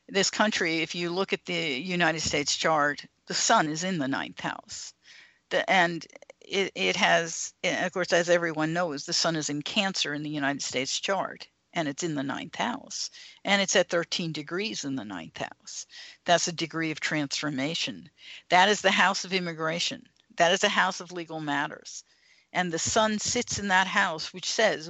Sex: female